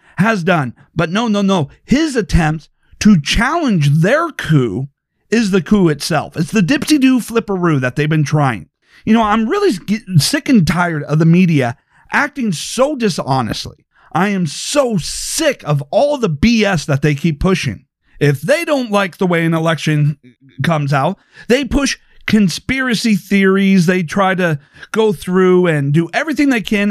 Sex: male